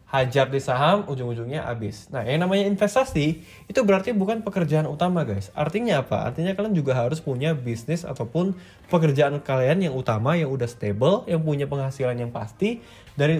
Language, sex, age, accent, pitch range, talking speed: English, male, 20-39, Indonesian, 130-175 Hz, 165 wpm